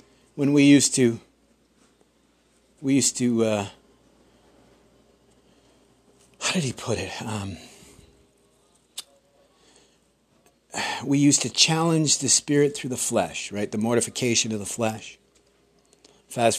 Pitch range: 115-145 Hz